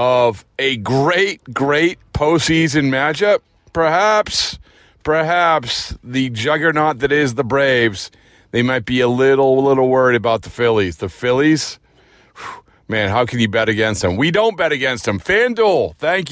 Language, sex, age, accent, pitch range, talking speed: English, male, 40-59, American, 115-155 Hz, 145 wpm